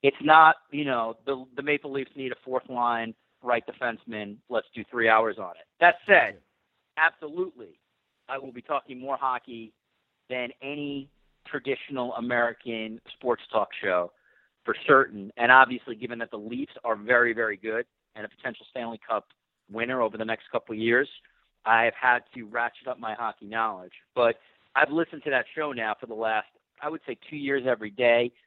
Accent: American